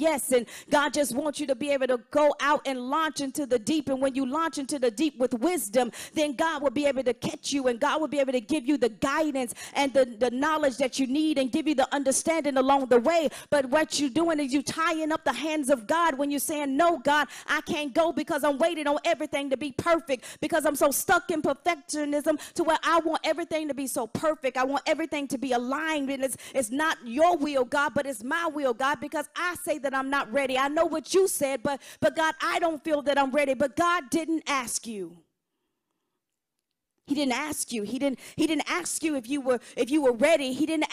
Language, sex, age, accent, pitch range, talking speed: English, female, 40-59, American, 275-320 Hz, 240 wpm